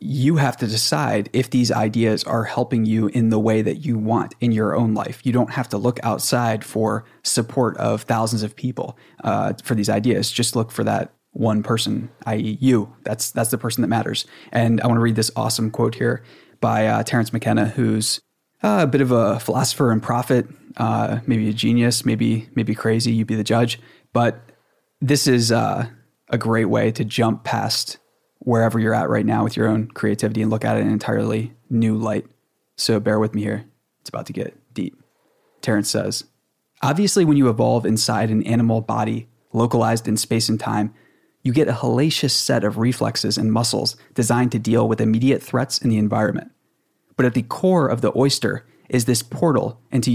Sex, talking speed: male, 195 wpm